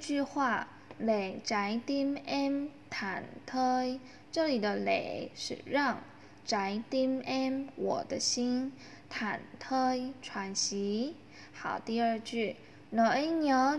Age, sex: 10-29, female